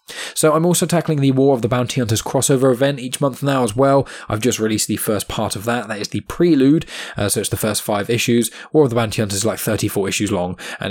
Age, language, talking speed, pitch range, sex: 10-29, English, 260 wpm, 100-130 Hz, male